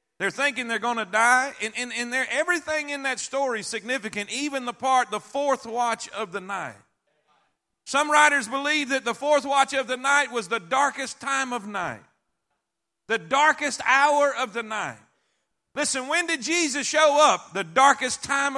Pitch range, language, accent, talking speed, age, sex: 235-290 Hz, English, American, 180 wpm, 40-59, male